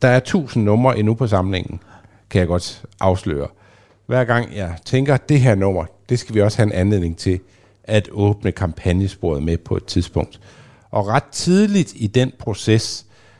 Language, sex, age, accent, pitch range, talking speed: Danish, male, 60-79, native, 100-125 Hz, 180 wpm